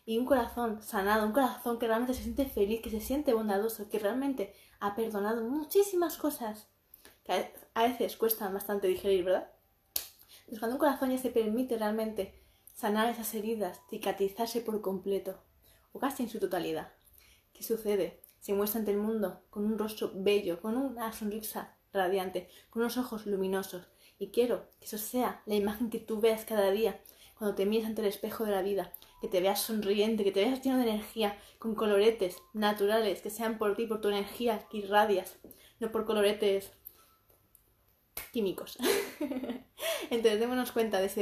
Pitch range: 200-230 Hz